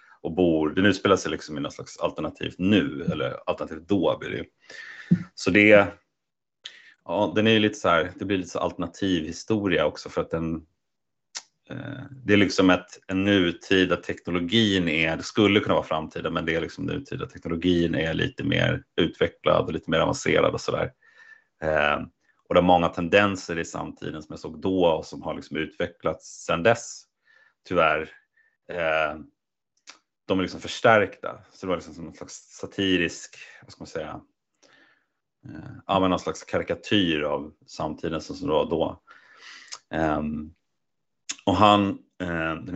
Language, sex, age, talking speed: Swedish, male, 30-49, 160 wpm